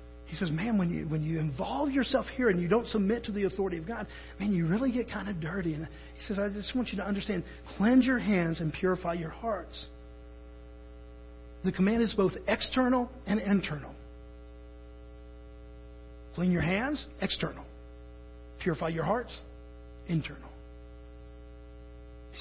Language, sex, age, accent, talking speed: English, male, 40-59, American, 155 wpm